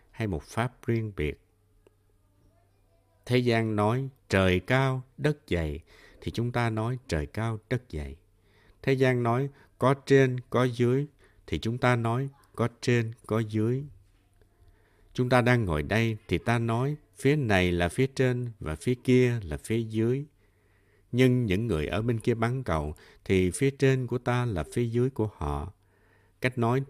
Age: 60-79